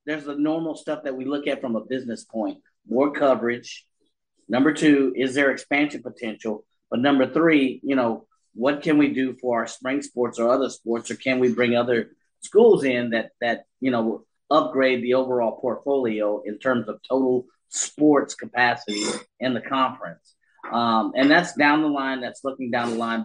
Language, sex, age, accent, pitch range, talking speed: English, male, 30-49, American, 115-145 Hz, 185 wpm